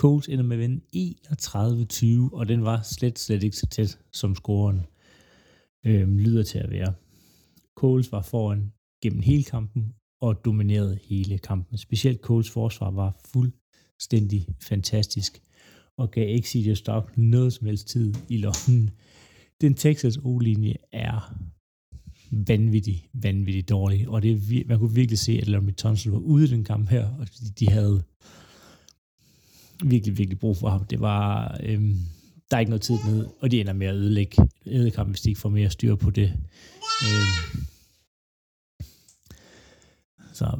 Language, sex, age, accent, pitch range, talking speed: Danish, male, 30-49, native, 100-120 Hz, 150 wpm